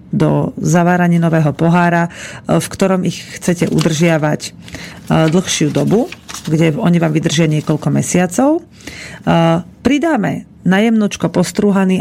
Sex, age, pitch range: female, 40-59, 160-190 Hz